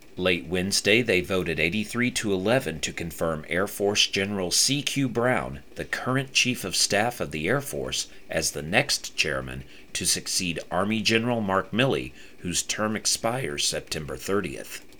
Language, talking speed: English, 150 wpm